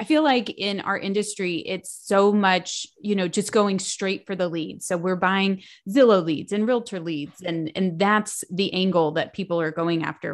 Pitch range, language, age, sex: 180-230 Hz, English, 30-49, female